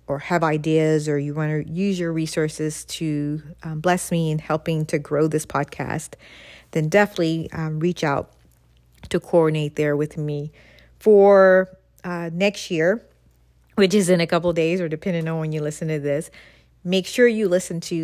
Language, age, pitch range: English, 40-59, 155-180 Hz